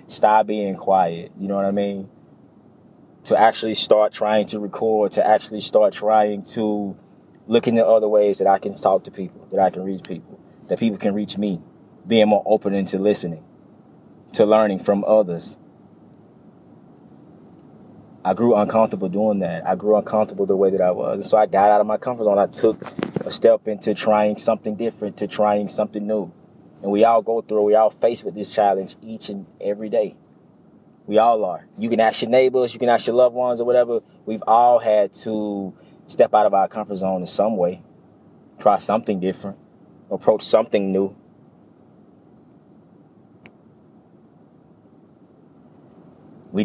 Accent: American